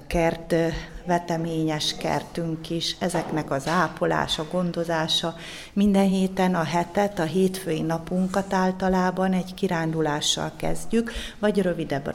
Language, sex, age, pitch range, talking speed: Hungarian, female, 30-49, 160-180 Hz, 105 wpm